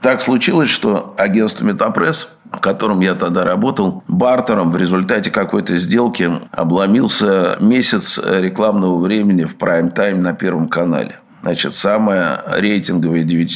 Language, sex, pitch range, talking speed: Russian, male, 85-110 Hz, 120 wpm